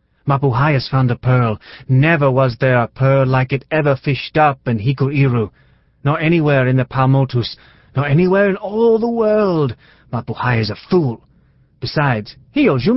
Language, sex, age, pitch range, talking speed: English, male, 30-49, 110-145 Hz, 165 wpm